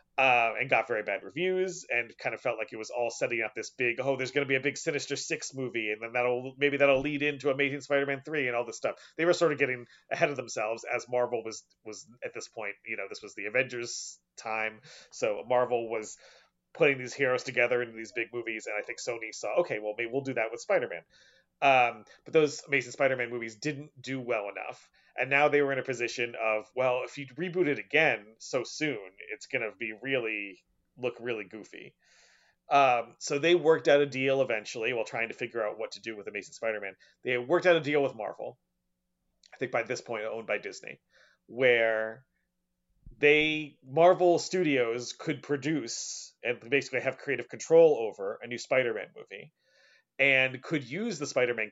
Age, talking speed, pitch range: 30-49, 205 wpm, 115-150 Hz